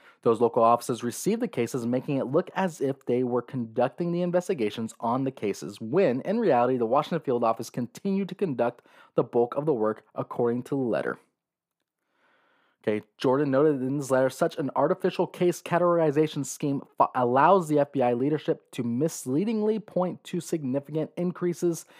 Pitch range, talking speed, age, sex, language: 125-175 Hz, 165 wpm, 20-39, male, English